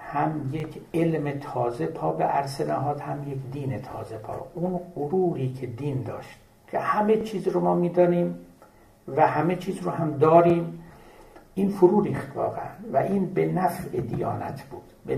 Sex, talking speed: male, 155 wpm